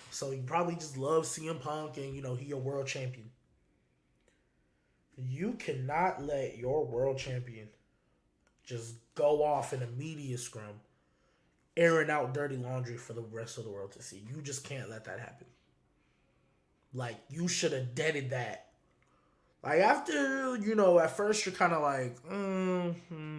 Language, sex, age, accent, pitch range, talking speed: English, male, 20-39, American, 120-160 Hz, 160 wpm